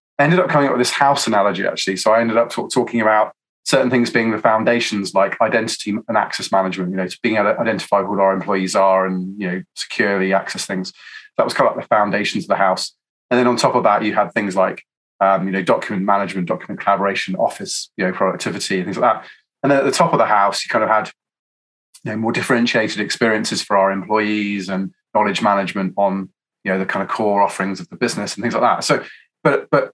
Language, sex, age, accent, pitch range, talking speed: English, male, 30-49, British, 95-120 Hz, 240 wpm